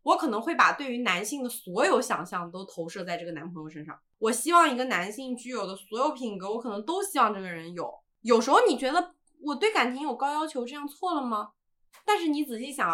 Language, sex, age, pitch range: Chinese, female, 20-39, 185-270 Hz